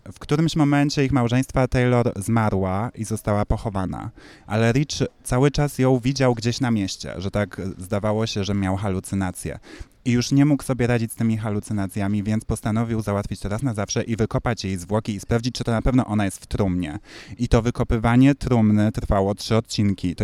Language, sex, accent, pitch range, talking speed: Polish, male, native, 100-120 Hz, 190 wpm